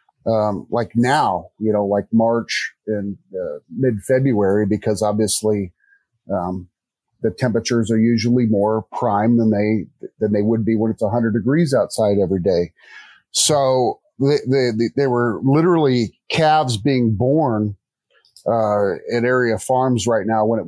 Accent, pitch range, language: American, 110-135 Hz, English